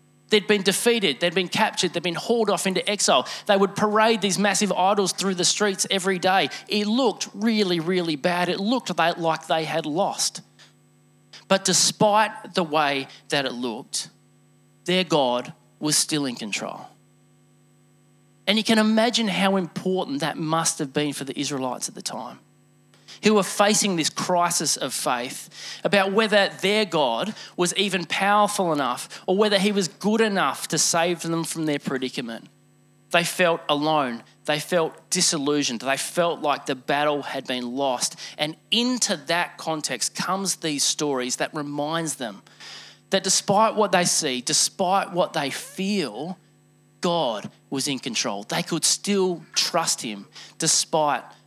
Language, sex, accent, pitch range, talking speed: English, male, Australian, 155-200 Hz, 155 wpm